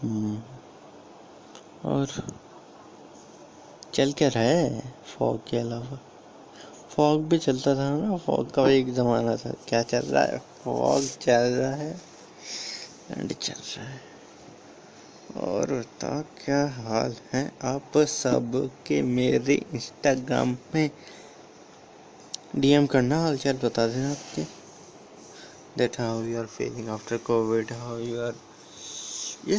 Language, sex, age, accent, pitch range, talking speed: Hindi, male, 20-39, native, 120-145 Hz, 115 wpm